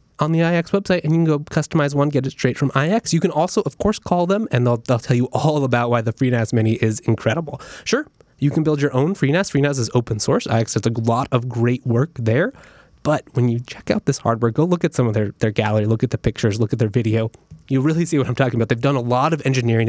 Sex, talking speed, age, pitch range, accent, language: male, 270 wpm, 20-39, 115-155 Hz, American, English